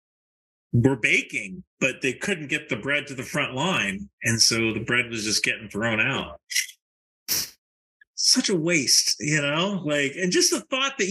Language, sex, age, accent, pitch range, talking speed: English, male, 40-59, American, 115-185 Hz, 175 wpm